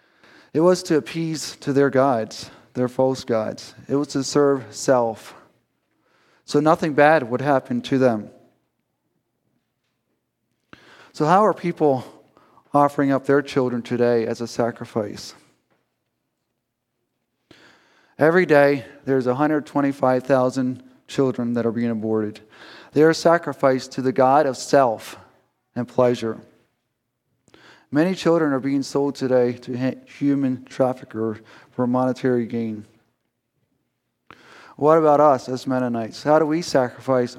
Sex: male